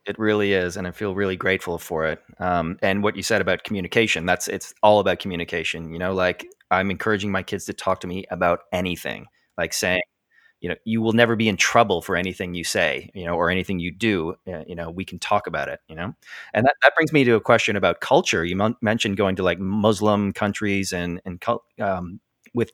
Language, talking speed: English, 225 wpm